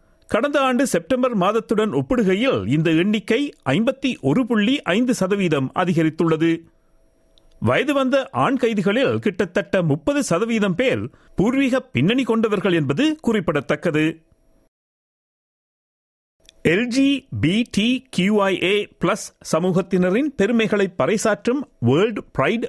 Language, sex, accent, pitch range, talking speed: Tamil, male, native, 165-240 Hz, 85 wpm